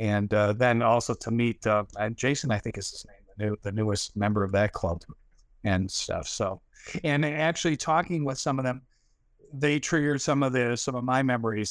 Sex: male